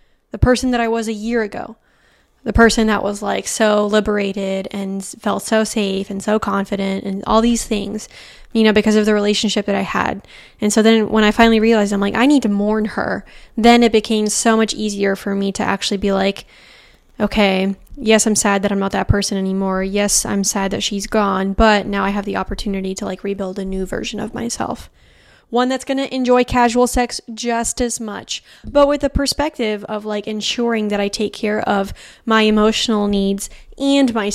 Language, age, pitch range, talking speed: English, 10-29, 200-225 Hz, 205 wpm